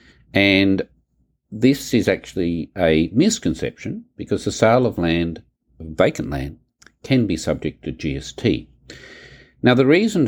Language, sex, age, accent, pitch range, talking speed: English, male, 50-69, Australian, 75-100 Hz, 125 wpm